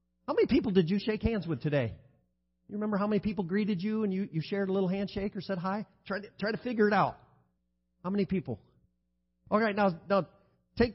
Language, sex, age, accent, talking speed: English, male, 50-69, American, 215 wpm